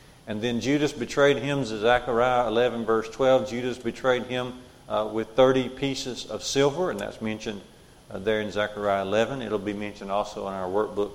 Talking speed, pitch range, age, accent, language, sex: 180 wpm, 110-135 Hz, 50-69, American, English, male